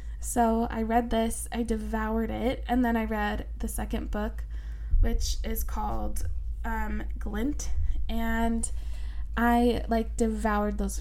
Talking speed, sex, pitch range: 130 wpm, female, 205-235 Hz